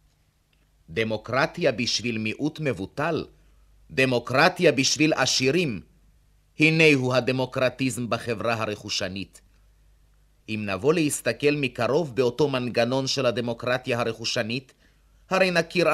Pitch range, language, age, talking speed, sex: 110-145 Hz, Hebrew, 30-49, 85 wpm, male